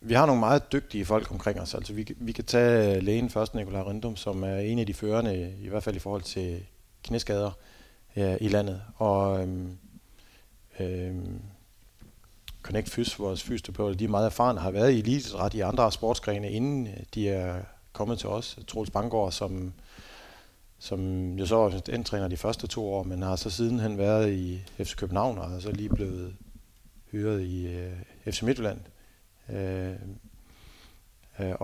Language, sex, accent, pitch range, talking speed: Danish, male, native, 95-110 Hz, 165 wpm